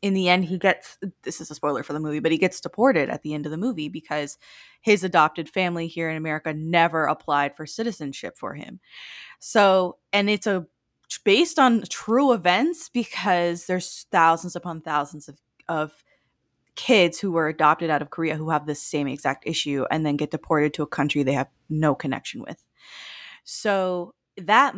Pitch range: 155-195 Hz